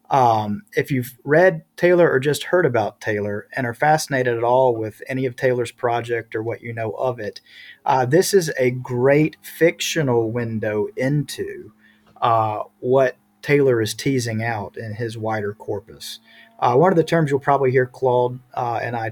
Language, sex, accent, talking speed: English, male, American, 175 wpm